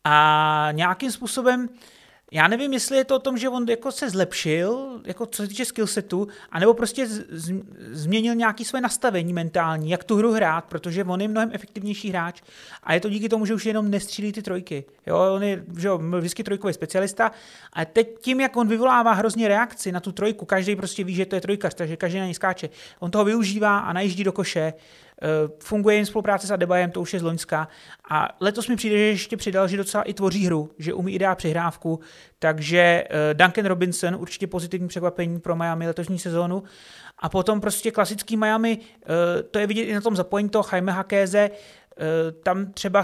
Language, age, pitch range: Czech, 30-49, 175-215 Hz